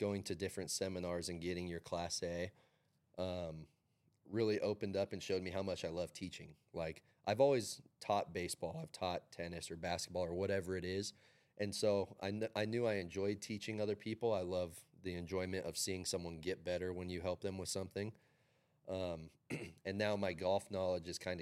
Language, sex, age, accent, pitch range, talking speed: English, male, 30-49, American, 85-100 Hz, 195 wpm